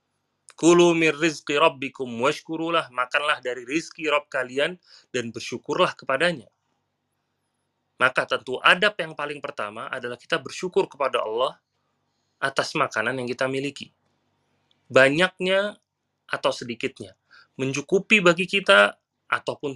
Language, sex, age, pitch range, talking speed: Indonesian, male, 30-49, 120-170 Hz, 105 wpm